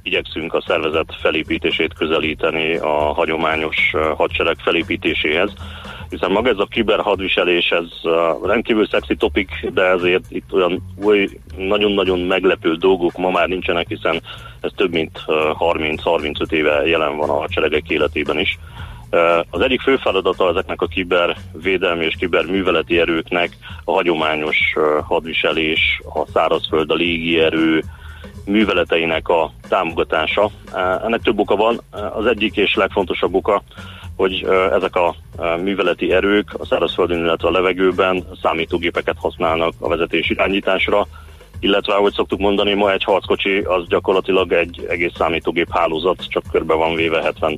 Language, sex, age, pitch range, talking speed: Hungarian, male, 30-49, 80-95 Hz, 130 wpm